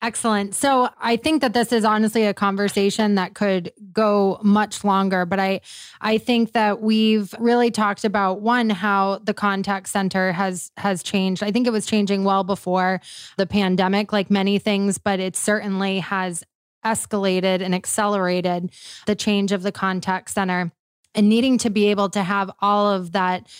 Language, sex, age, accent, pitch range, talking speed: English, female, 20-39, American, 190-215 Hz, 170 wpm